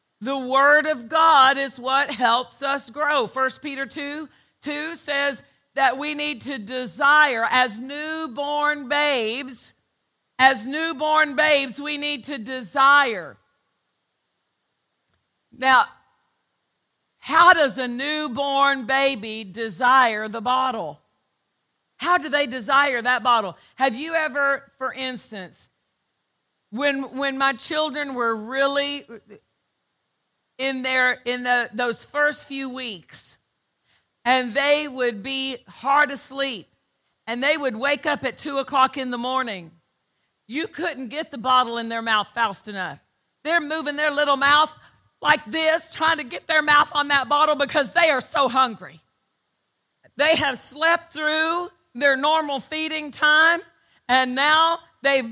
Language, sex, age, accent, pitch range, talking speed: English, female, 50-69, American, 255-300 Hz, 130 wpm